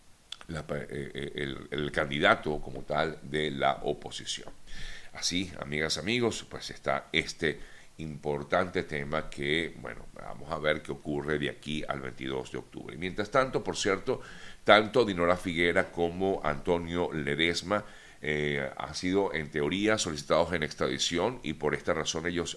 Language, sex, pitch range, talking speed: Spanish, male, 75-90 Hz, 145 wpm